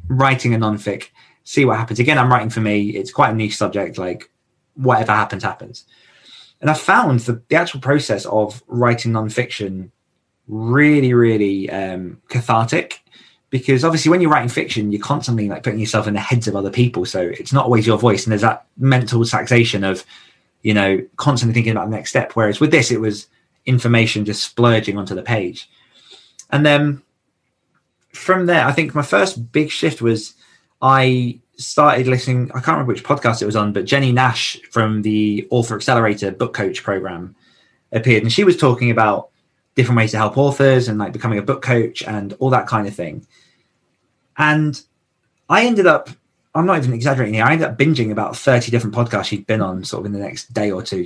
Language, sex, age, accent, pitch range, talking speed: English, male, 20-39, British, 105-130 Hz, 195 wpm